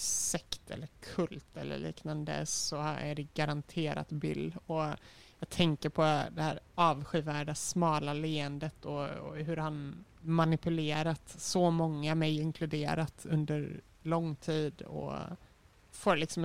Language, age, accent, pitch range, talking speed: Swedish, 30-49, native, 150-165 Hz, 125 wpm